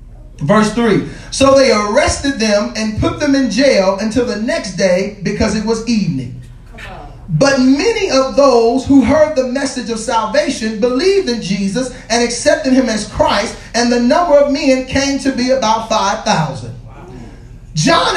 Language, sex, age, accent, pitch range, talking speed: English, male, 40-59, American, 220-275 Hz, 160 wpm